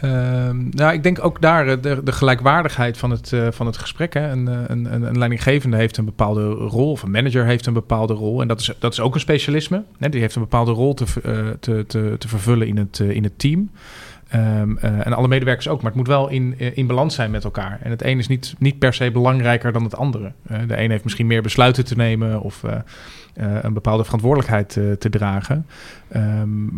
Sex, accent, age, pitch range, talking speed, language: male, Dutch, 40-59, 110-130 Hz, 235 wpm, Dutch